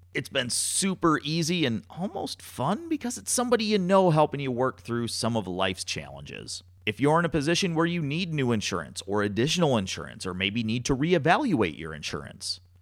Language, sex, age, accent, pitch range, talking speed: English, male, 40-59, American, 100-150 Hz, 185 wpm